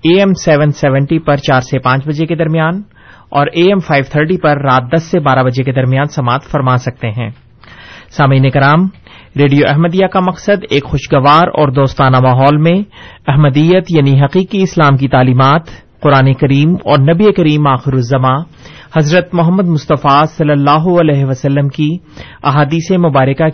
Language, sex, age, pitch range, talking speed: Urdu, male, 30-49, 135-170 Hz, 160 wpm